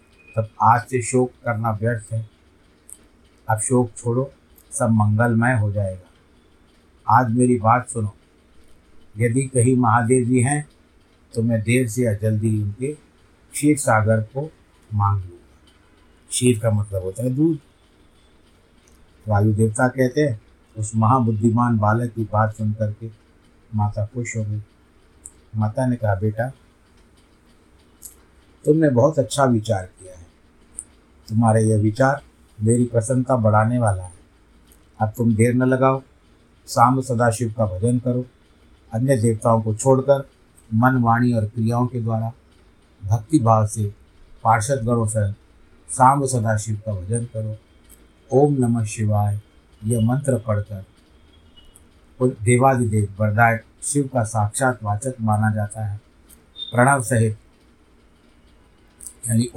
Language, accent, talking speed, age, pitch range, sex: Hindi, native, 120 wpm, 50-69, 80-120 Hz, male